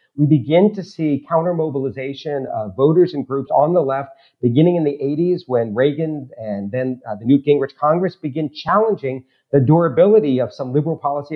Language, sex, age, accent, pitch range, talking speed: English, male, 40-59, American, 135-165 Hz, 175 wpm